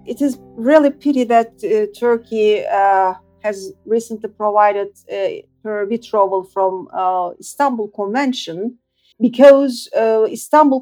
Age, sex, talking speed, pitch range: 50-69, female, 130 wpm, 200-255 Hz